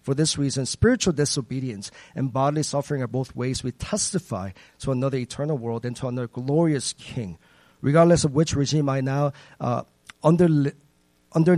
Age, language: 40-59, English